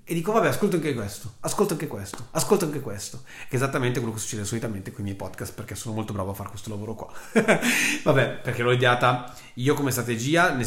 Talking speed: 220 wpm